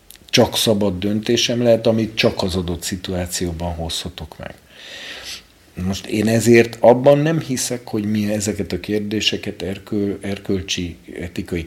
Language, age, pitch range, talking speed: Hungarian, 50-69, 85-110 Hz, 130 wpm